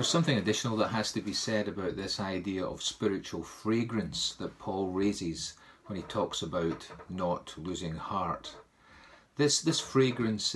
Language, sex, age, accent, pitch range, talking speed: English, male, 40-59, British, 90-110 Hz, 155 wpm